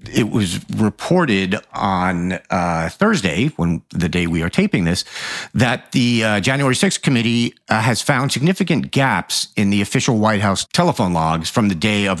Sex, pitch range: male, 95-130 Hz